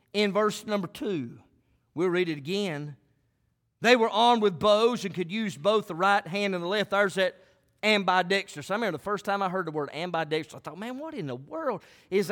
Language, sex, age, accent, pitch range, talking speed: English, male, 40-59, American, 210-345 Hz, 215 wpm